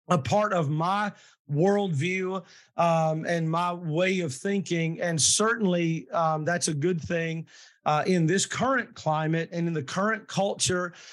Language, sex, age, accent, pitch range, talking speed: English, male, 40-59, American, 160-185 Hz, 150 wpm